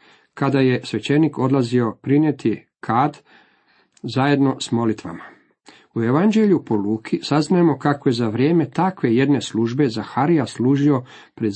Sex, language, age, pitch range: male, Croatian, 50-69, 115-145 Hz